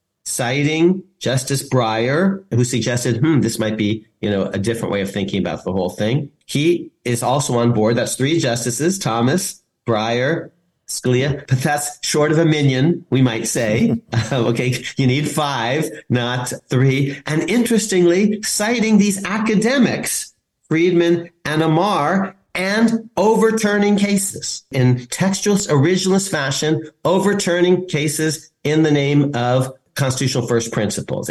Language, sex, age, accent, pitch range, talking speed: English, male, 40-59, American, 115-165 Hz, 135 wpm